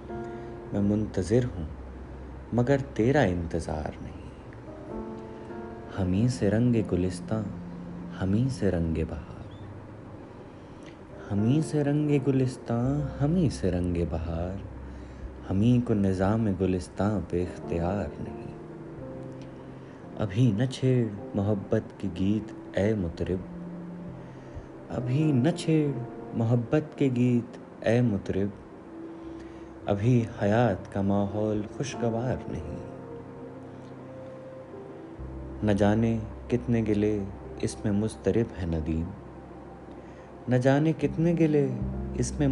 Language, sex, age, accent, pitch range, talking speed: Hindi, male, 30-49, native, 90-120 Hz, 90 wpm